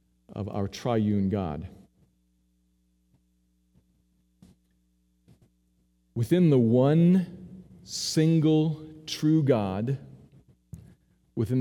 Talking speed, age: 55 wpm, 40-59